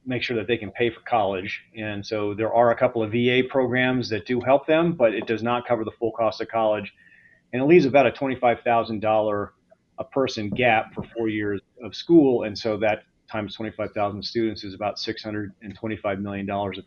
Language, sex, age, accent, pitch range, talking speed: English, male, 30-49, American, 110-125 Hz, 200 wpm